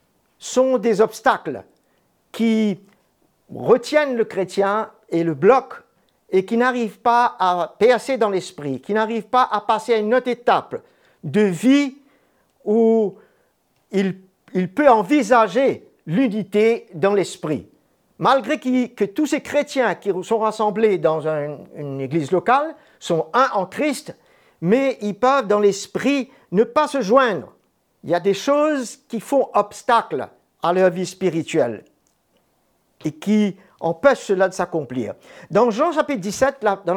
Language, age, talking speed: French, 50-69, 140 wpm